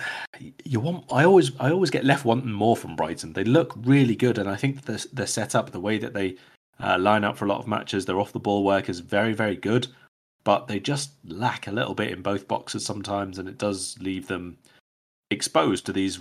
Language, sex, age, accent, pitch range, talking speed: English, male, 30-49, British, 95-120 Hz, 220 wpm